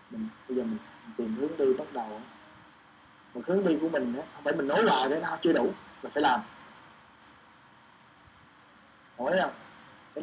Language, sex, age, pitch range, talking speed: Vietnamese, male, 20-39, 120-175 Hz, 180 wpm